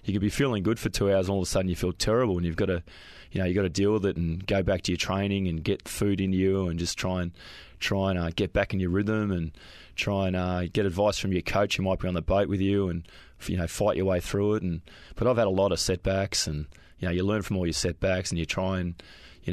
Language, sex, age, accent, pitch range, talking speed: English, male, 20-39, Australian, 85-100 Hz, 300 wpm